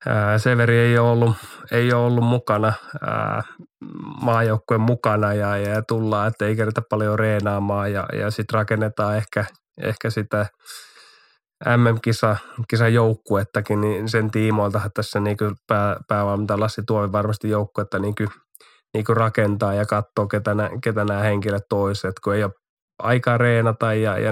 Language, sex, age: Finnish, male, 20-39